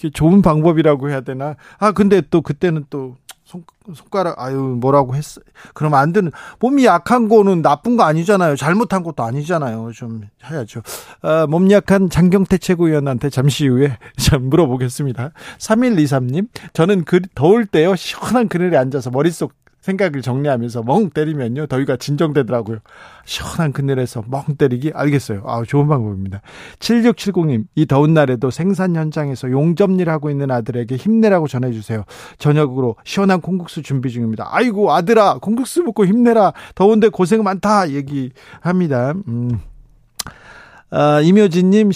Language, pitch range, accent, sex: Korean, 135-190 Hz, native, male